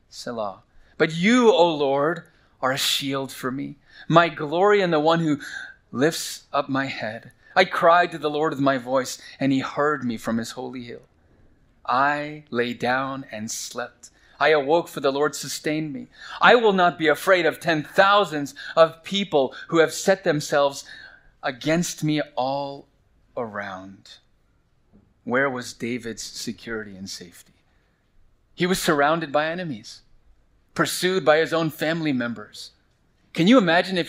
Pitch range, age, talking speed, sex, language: 125-160 Hz, 30-49, 150 wpm, male, English